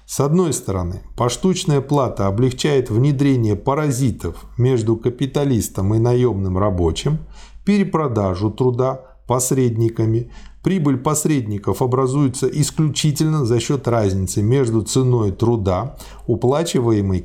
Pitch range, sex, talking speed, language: 105-140 Hz, male, 95 wpm, Russian